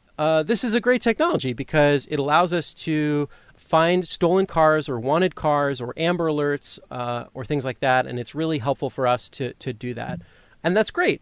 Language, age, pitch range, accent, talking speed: English, 30-49, 130-155 Hz, American, 205 wpm